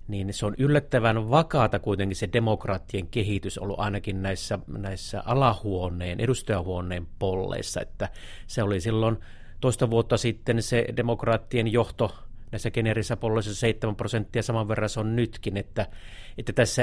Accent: native